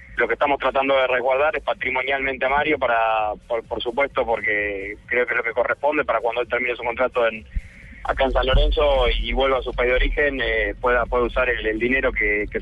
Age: 30-49